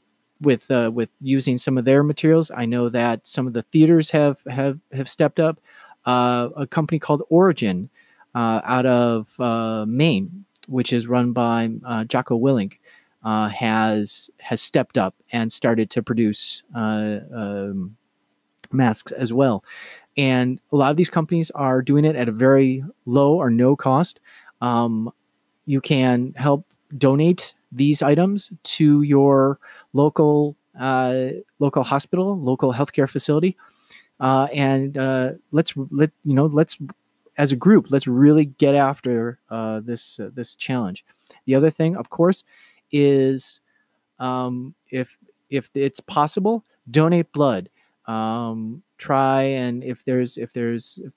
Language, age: English, 30-49